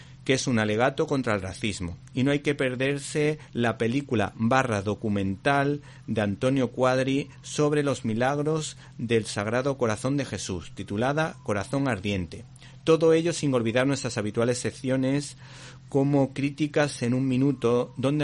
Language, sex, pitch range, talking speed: Spanish, male, 115-135 Hz, 140 wpm